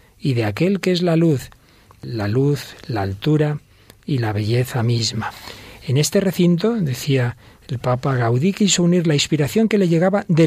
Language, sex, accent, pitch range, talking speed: Spanish, male, Spanish, 125-175 Hz, 170 wpm